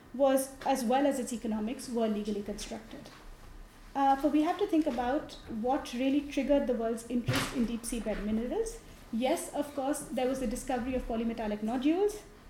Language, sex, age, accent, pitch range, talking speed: English, female, 30-49, Indian, 230-280 Hz, 180 wpm